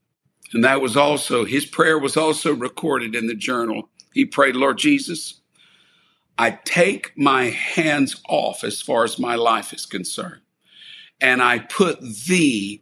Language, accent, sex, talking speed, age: English, American, male, 150 wpm, 60-79